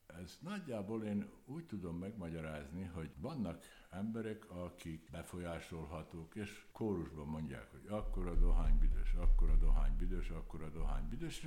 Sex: male